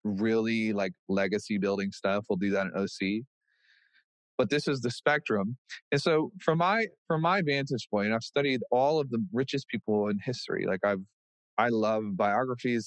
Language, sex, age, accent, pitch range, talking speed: English, male, 20-39, American, 105-135 Hz, 175 wpm